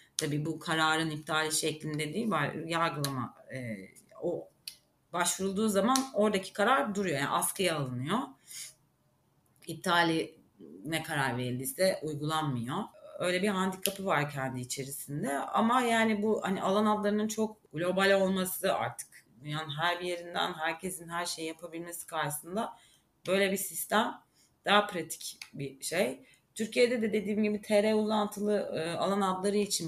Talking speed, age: 125 wpm, 30-49